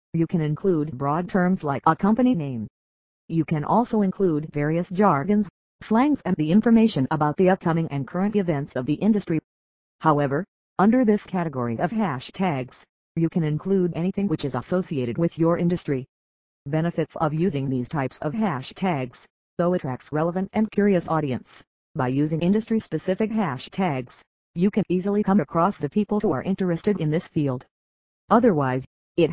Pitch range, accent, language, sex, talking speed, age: 140-185 Hz, American, English, female, 155 wpm, 50-69